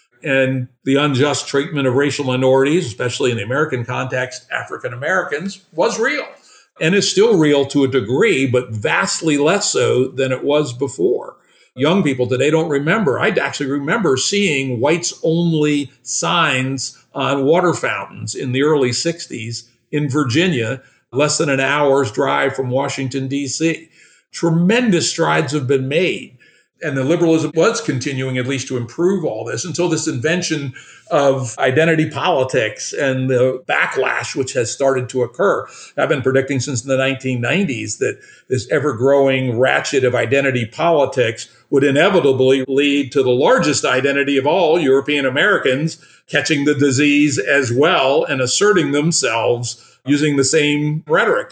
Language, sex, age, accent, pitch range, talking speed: English, male, 50-69, American, 130-160 Hz, 145 wpm